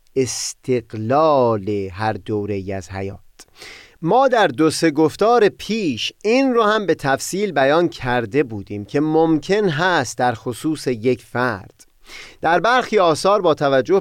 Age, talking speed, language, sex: 30-49, 135 wpm, Persian, male